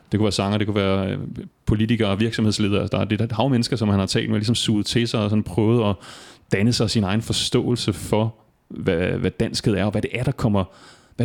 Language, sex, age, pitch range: Danish, male, 30-49, 100-115 Hz